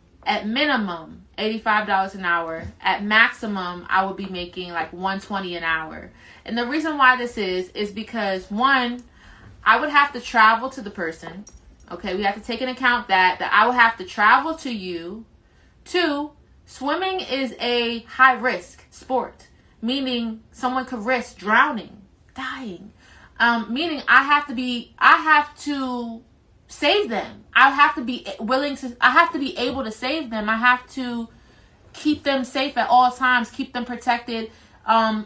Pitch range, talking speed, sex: 200-255 Hz, 170 wpm, female